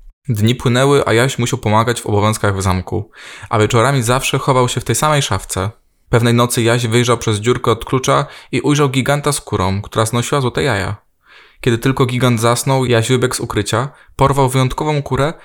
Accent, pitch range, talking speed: native, 115-145 Hz, 185 wpm